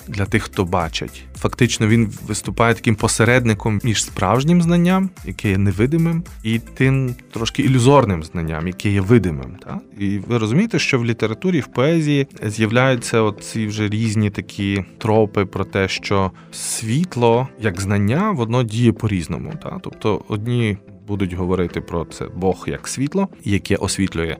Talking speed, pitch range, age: 145 wpm, 95-120 Hz, 20-39